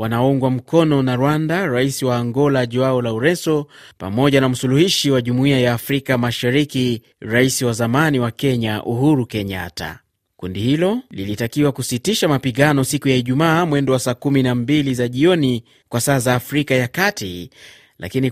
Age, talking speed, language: 30-49, 145 wpm, Swahili